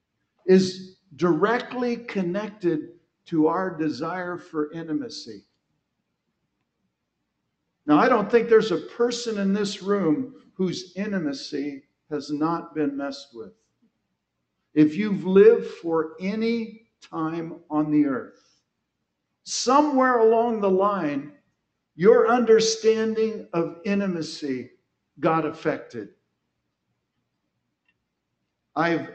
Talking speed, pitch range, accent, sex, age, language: 95 wpm, 160-240 Hz, American, male, 60-79, English